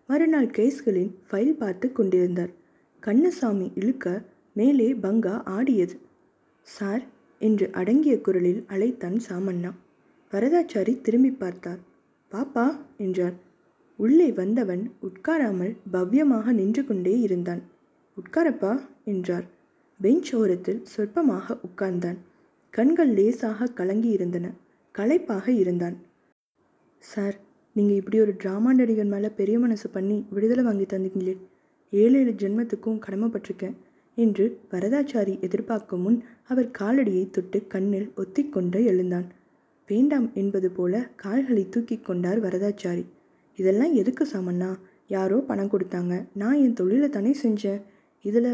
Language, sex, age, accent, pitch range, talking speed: Tamil, female, 20-39, native, 190-245 Hz, 105 wpm